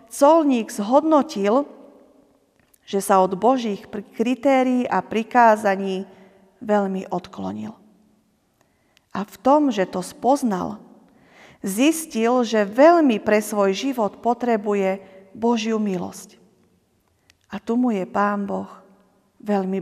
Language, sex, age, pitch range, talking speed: Slovak, female, 40-59, 195-245 Hz, 100 wpm